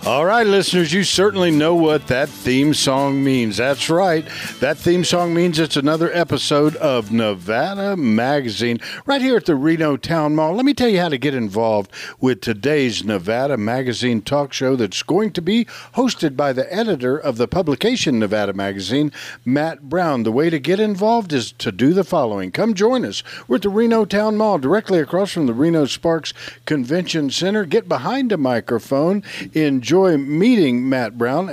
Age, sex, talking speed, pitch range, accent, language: 50-69, male, 180 wpm, 120-180 Hz, American, English